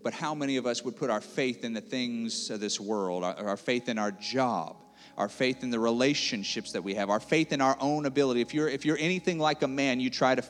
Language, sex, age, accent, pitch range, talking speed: English, male, 40-59, American, 145-220 Hz, 255 wpm